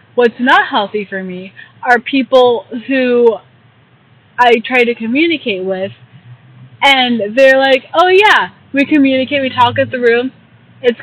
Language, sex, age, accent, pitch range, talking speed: English, female, 20-39, American, 190-260 Hz, 140 wpm